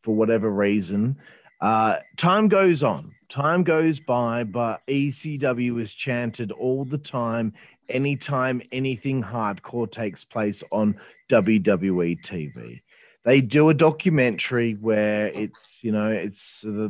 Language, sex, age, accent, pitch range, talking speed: English, male, 30-49, Australian, 110-150 Hz, 125 wpm